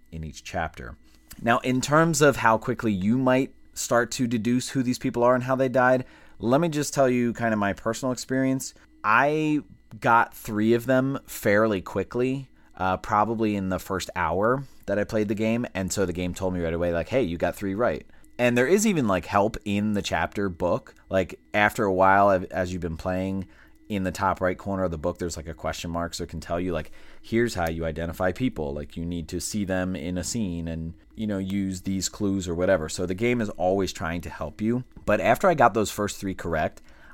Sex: male